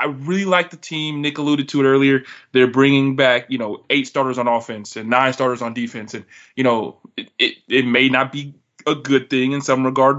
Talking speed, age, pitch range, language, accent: 230 wpm, 20-39, 125-145 Hz, English, American